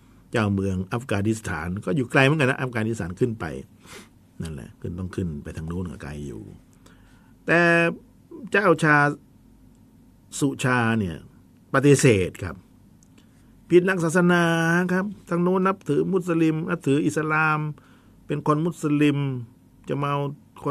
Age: 60-79